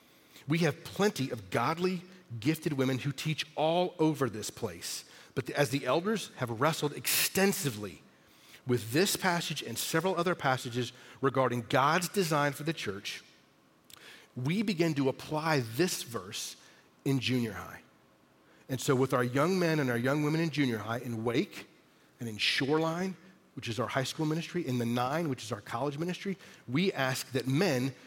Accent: American